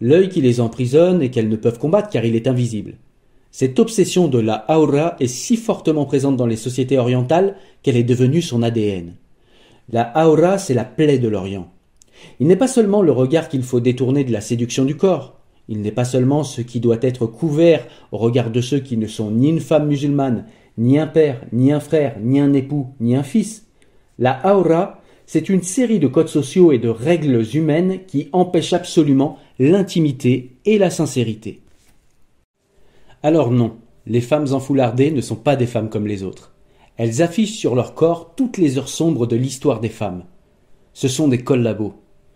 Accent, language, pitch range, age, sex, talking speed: French, French, 115-155 Hz, 40-59, male, 190 wpm